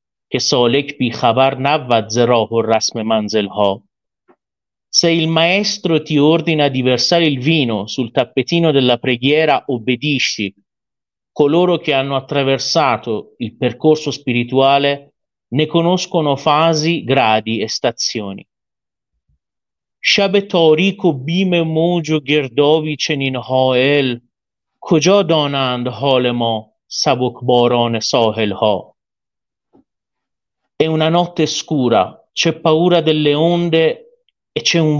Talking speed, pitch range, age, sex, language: 70 wpm, 120-160 Hz, 40-59, male, Italian